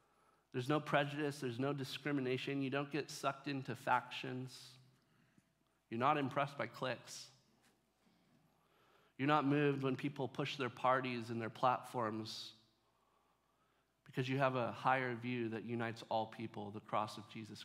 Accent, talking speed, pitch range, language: American, 145 wpm, 120-145 Hz, English